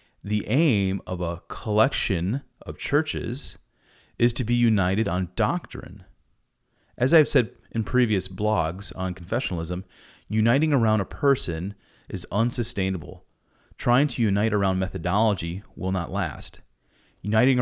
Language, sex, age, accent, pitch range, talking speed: English, male, 30-49, American, 90-115 Hz, 125 wpm